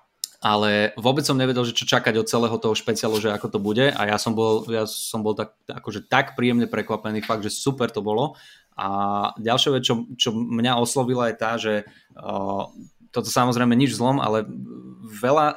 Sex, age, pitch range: male, 20-39, 110-125 Hz